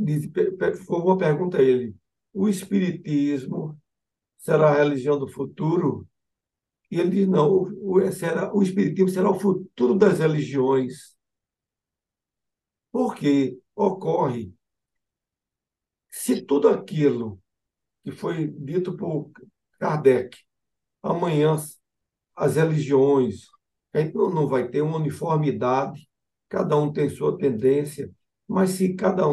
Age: 60-79